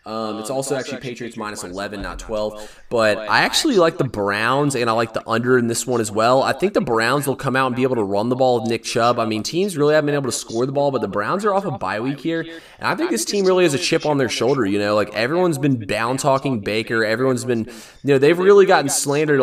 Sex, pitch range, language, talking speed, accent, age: male, 110-135 Hz, English, 275 wpm, American, 20-39